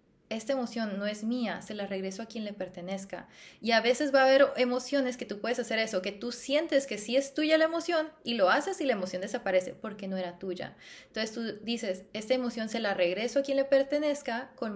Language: Spanish